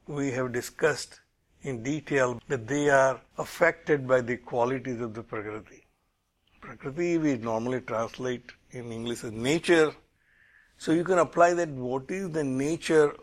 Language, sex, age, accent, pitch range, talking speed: English, male, 60-79, Indian, 120-145 Hz, 145 wpm